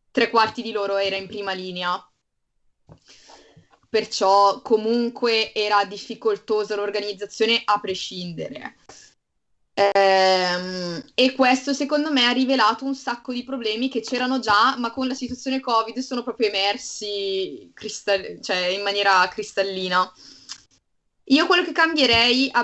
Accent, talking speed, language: native, 125 wpm, Italian